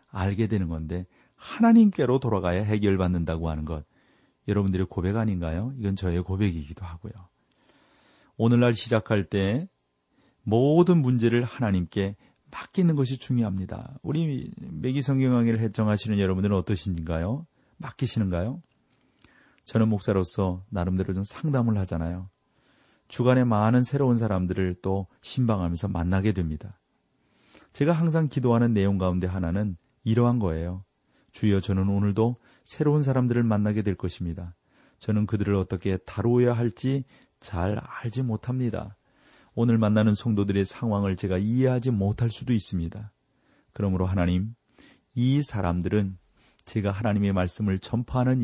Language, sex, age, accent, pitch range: Korean, male, 40-59, native, 95-125 Hz